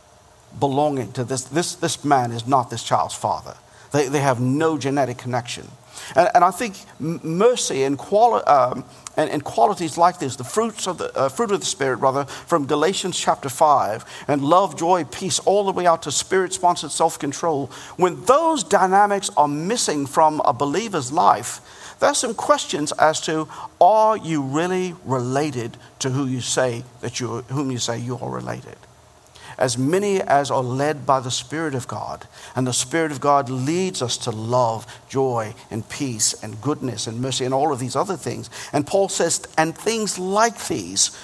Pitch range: 125-185 Hz